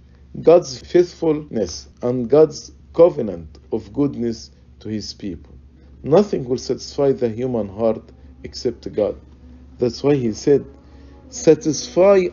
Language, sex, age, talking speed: English, male, 50-69, 110 wpm